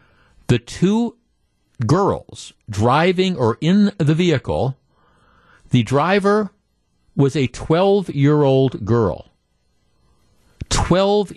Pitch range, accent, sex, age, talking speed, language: 115-175 Hz, American, male, 50-69, 80 wpm, English